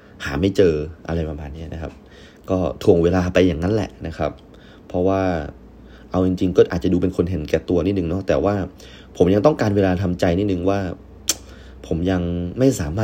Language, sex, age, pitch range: Thai, male, 30-49, 75-100 Hz